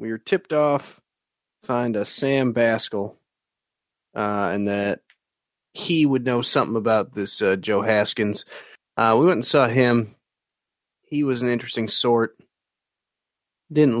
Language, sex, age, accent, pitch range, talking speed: English, male, 30-49, American, 100-130 Hz, 140 wpm